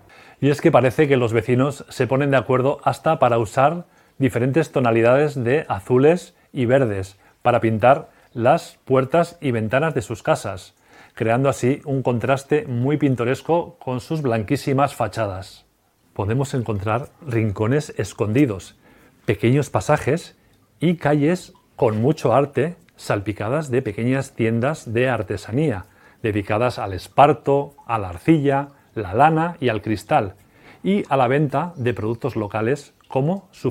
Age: 40-59